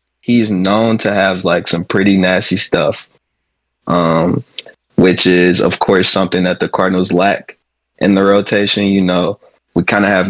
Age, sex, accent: 20-39, male, American